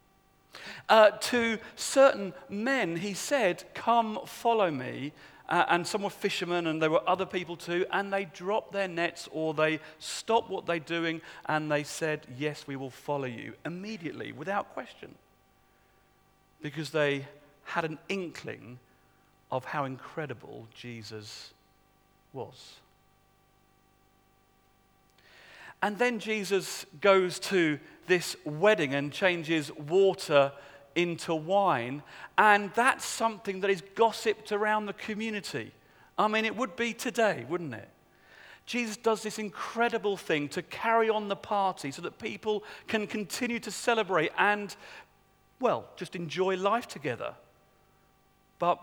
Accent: British